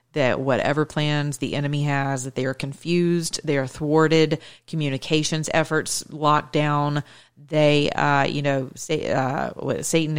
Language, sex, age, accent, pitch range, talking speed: English, female, 40-59, American, 140-170 Hz, 145 wpm